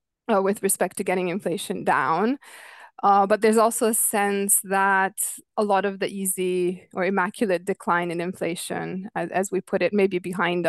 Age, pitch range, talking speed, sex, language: 20-39, 180-215 Hz, 180 wpm, female, English